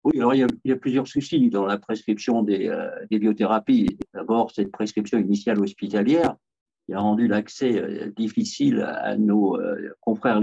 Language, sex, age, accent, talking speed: English, male, 50-69, French, 180 wpm